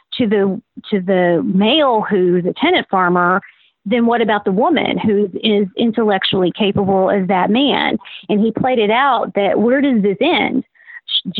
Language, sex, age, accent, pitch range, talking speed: English, female, 40-59, American, 190-225 Hz, 170 wpm